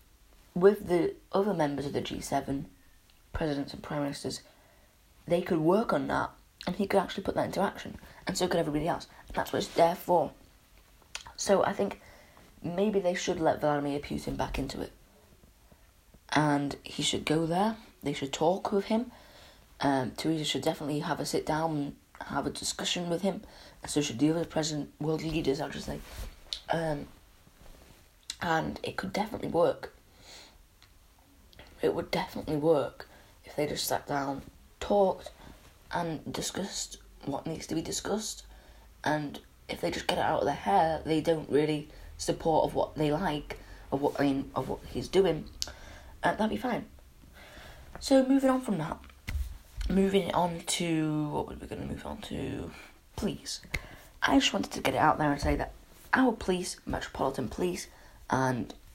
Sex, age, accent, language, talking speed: female, 30-49, British, English, 170 wpm